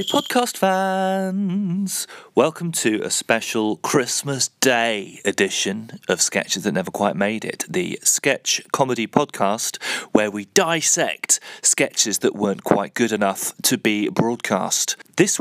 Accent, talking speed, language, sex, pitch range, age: British, 130 wpm, English, male, 110-160 Hz, 30-49